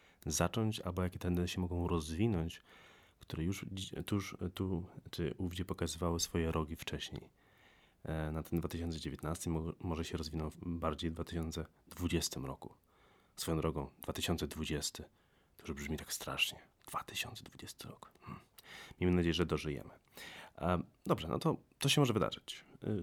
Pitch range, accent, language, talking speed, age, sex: 80-90 Hz, native, Polish, 125 wpm, 30-49, male